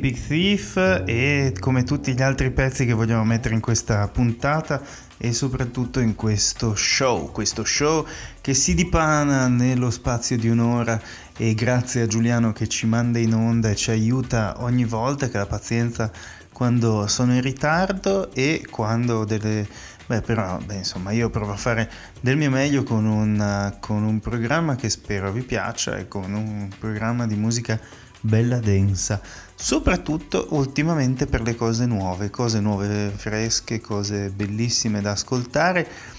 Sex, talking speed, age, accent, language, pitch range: male, 155 wpm, 20-39, native, Italian, 105-130 Hz